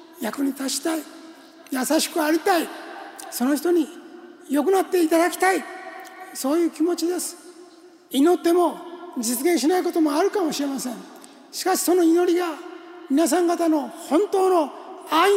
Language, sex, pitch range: Japanese, male, 310-365 Hz